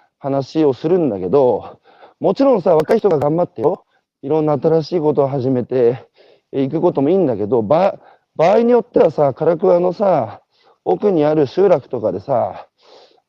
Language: Japanese